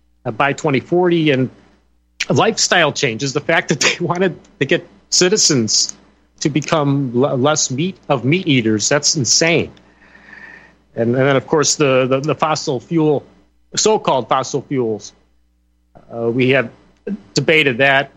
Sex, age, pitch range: male, 40-59, 135-180 Hz